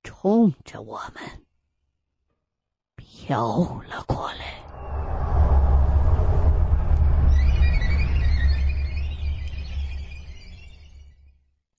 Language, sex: Chinese, female